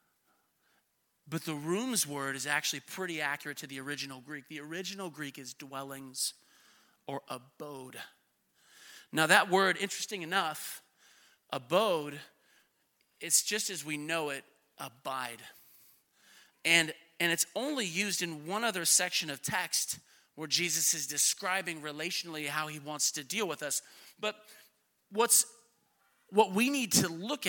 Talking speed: 135 wpm